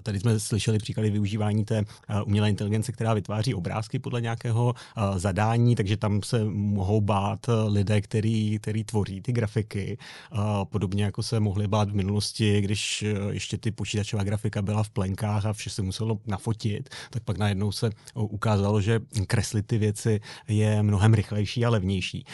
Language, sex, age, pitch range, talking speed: English, male, 30-49, 105-115 Hz, 160 wpm